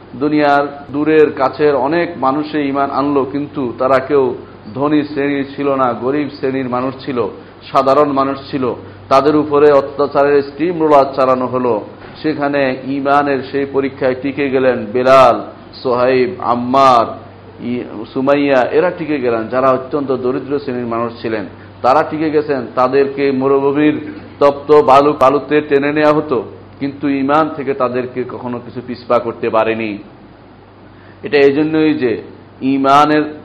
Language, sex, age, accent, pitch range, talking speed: Bengali, male, 50-69, native, 125-145 Hz, 125 wpm